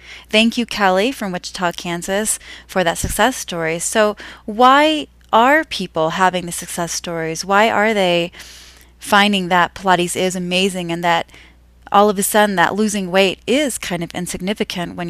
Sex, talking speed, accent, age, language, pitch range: female, 160 wpm, American, 30-49, English, 170-205 Hz